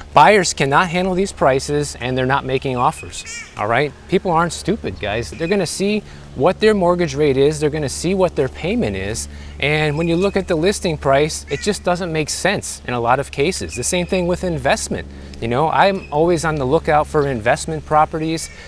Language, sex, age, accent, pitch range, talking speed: English, male, 30-49, American, 110-155 Hz, 210 wpm